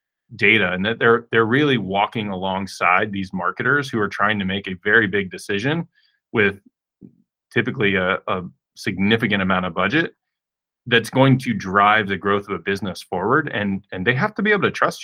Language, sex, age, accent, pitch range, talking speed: English, male, 30-49, American, 95-115 Hz, 185 wpm